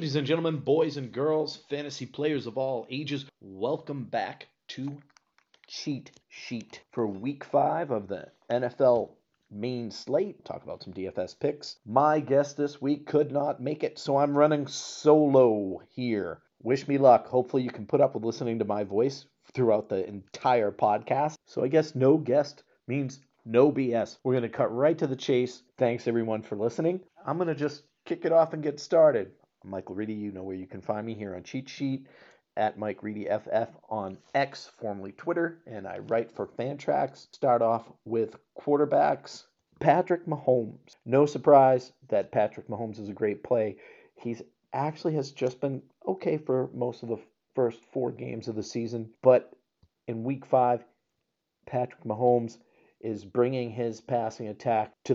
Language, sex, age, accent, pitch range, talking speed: English, male, 40-59, American, 115-145 Hz, 170 wpm